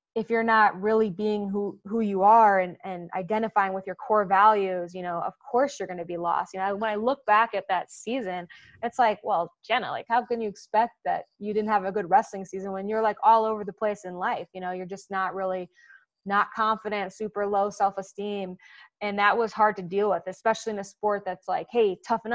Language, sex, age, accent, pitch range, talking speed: English, female, 20-39, American, 190-225 Hz, 230 wpm